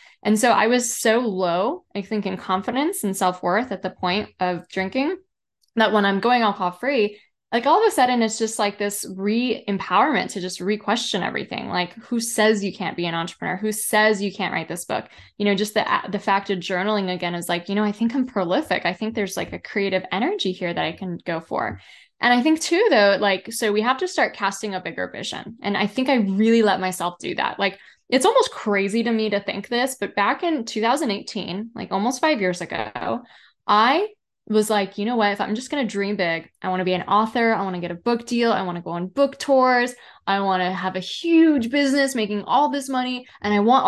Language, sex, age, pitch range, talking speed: English, female, 10-29, 190-245 Hz, 235 wpm